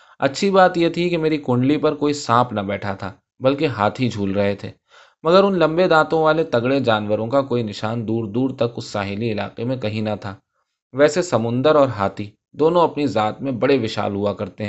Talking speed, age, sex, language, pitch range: 200 wpm, 20-39, male, Urdu, 105-140 Hz